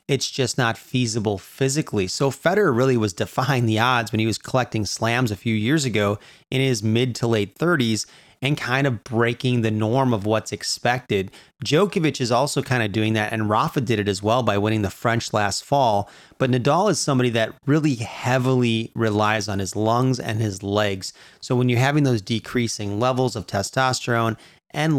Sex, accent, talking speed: male, American, 190 wpm